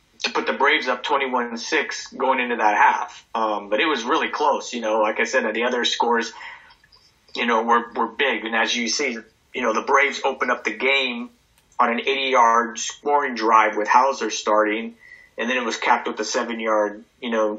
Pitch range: 110-125 Hz